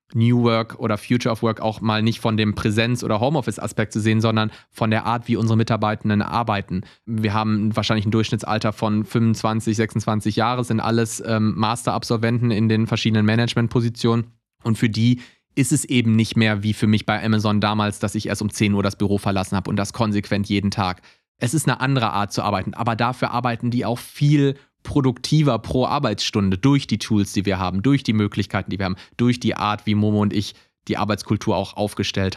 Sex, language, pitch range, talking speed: male, German, 110-120 Hz, 200 wpm